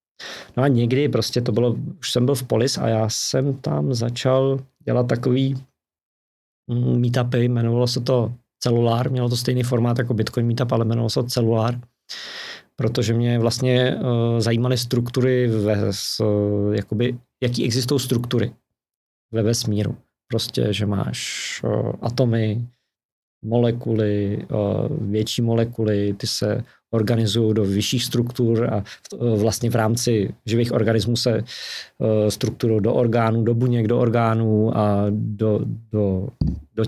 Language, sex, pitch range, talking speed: Czech, male, 110-125 Hz, 125 wpm